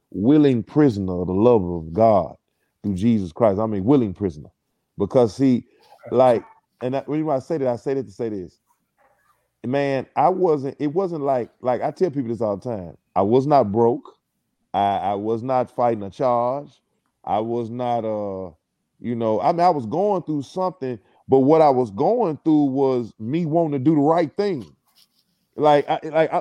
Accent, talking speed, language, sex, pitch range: American, 200 wpm, English, male, 115-155 Hz